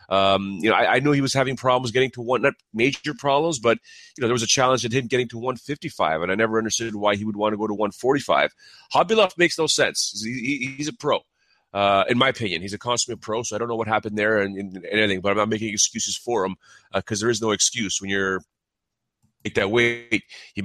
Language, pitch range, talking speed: English, 105-125 Hz, 255 wpm